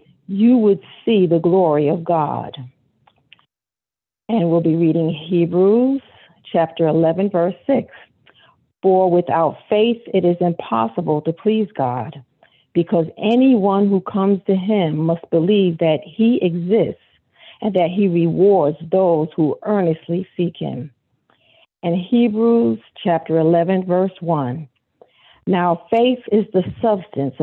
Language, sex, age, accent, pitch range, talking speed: English, female, 50-69, American, 165-205 Hz, 120 wpm